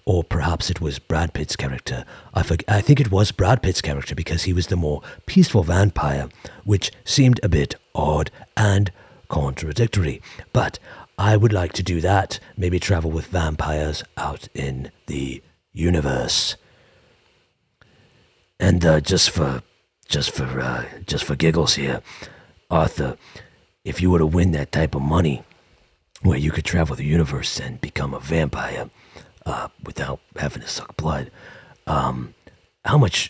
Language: English